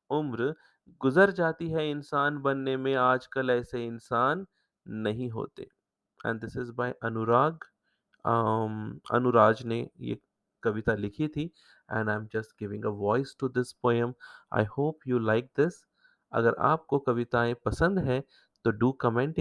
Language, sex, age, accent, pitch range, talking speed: English, male, 30-49, Indian, 115-145 Hz, 140 wpm